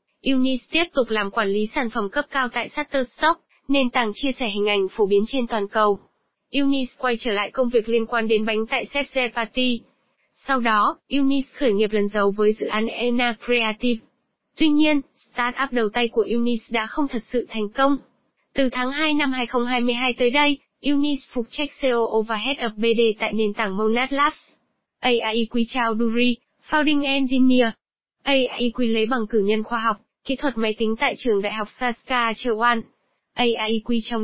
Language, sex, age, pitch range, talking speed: Vietnamese, female, 20-39, 225-265 Hz, 185 wpm